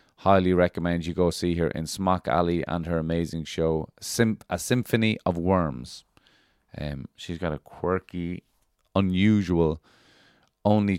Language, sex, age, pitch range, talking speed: English, male, 30-49, 80-105 Hz, 130 wpm